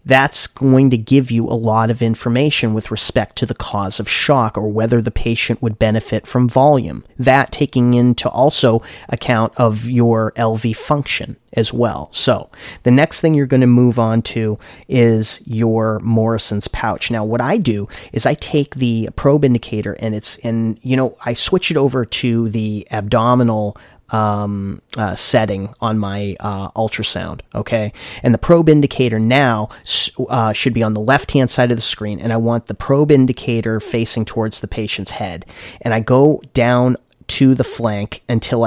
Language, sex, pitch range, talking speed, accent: English, male, 110-130 Hz, 175 wpm, American